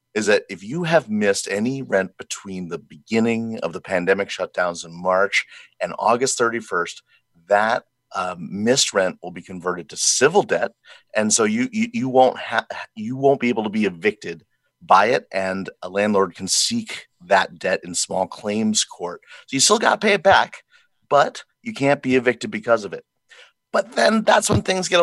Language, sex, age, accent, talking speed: English, male, 30-49, American, 190 wpm